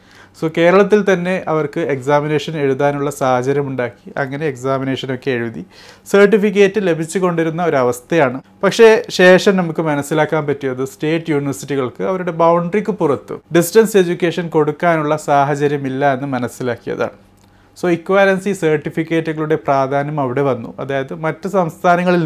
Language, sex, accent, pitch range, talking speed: Malayalam, male, native, 135-180 Hz, 110 wpm